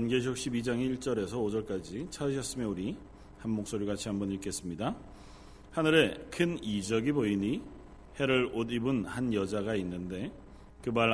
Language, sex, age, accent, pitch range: Korean, male, 40-59, native, 100-135 Hz